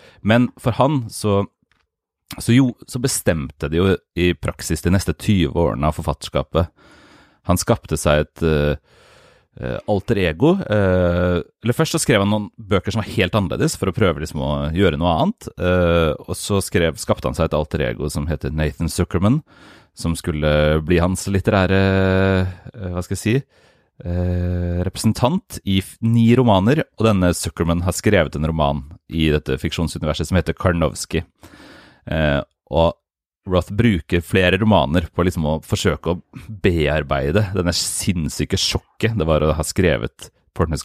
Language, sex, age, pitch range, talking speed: English, male, 30-49, 80-100 Hz, 145 wpm